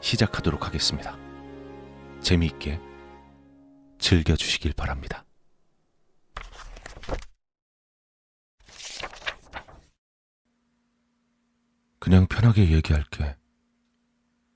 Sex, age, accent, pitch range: male, 40-59, native, 80-110 Hz